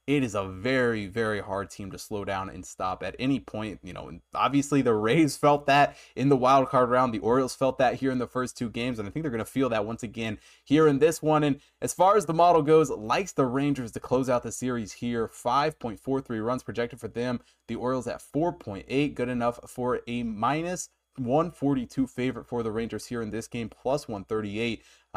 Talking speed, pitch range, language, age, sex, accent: 220 wpm, 110-140 Hz, English, 20-39, male, American